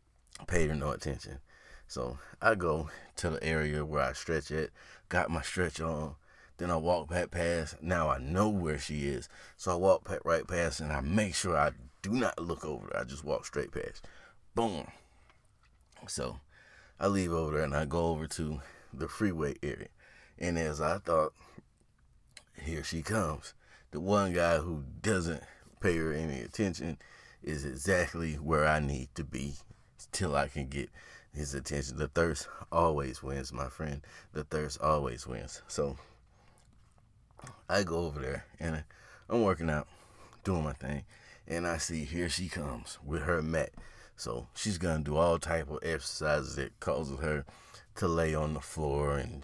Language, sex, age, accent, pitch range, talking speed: English, male, 30-49, American, 75-90 Hz, 170 wpm